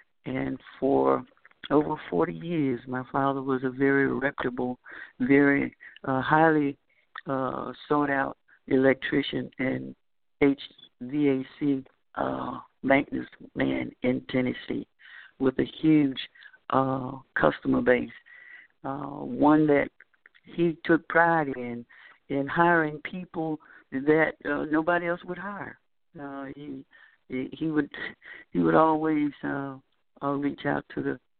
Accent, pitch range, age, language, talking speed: American, 130-155 Hz, 60-79, English, 115 wpm